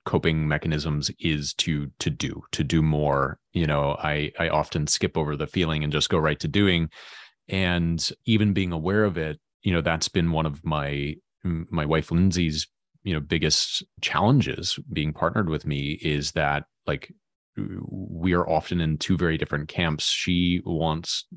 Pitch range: 75-90 Hz